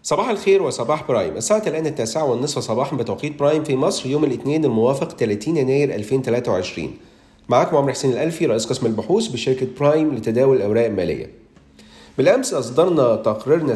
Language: Arabic